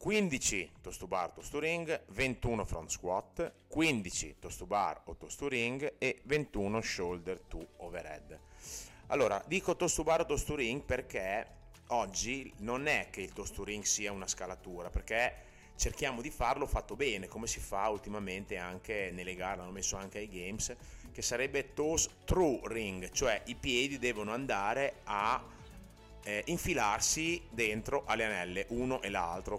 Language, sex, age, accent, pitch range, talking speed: Italian, male, 30-49, native, 90-130 Hz, 140 wpm